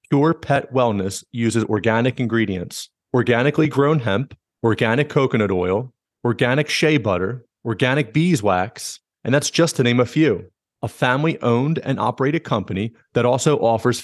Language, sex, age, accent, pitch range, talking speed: English, male, 30-49, American, 115-145 Hz, 135 wpm